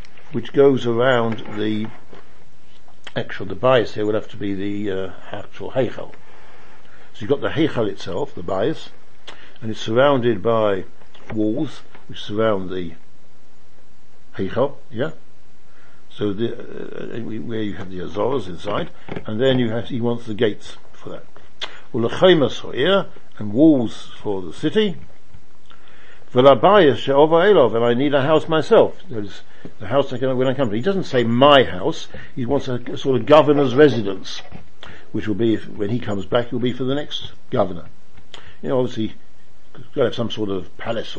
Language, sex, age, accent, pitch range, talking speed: English, male, 60-79, British, 105-140 Hz, 170 wpm